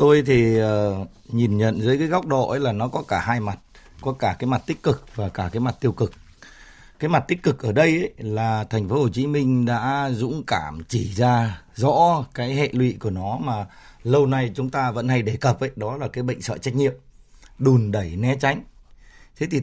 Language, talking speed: Vietnamese, 225 wpm